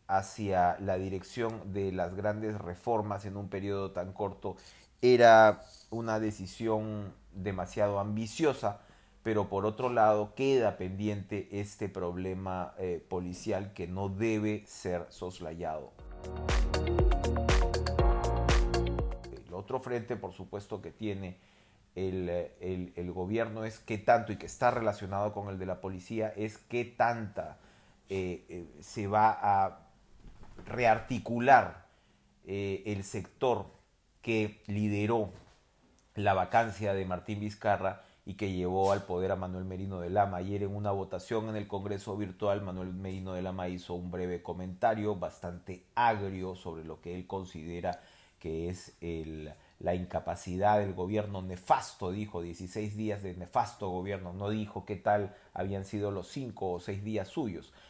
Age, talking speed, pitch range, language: 30-49, 135 wpm, 90-105 Hz, Spanish